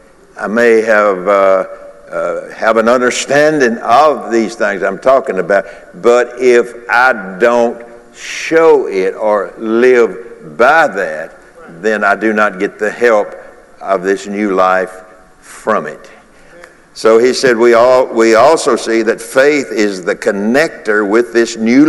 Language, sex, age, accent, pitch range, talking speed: English, male, 60-79, American, 110-125 Hz, 145 wpm